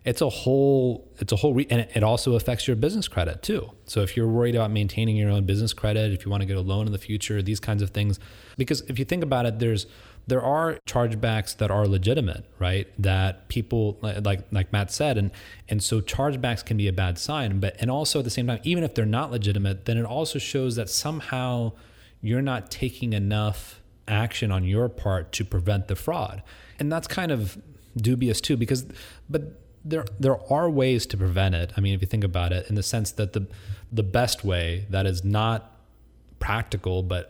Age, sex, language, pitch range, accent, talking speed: 30-49, male, English, 95-115 Hz, American, 210 wpm